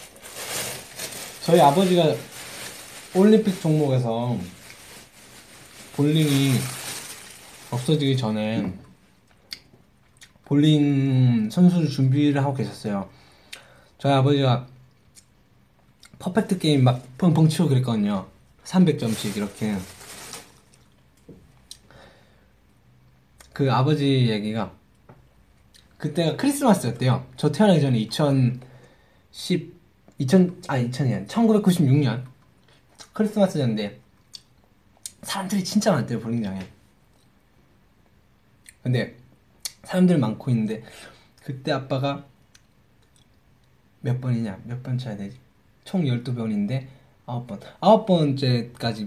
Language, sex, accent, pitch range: Korean, male, native, 115-155 Hz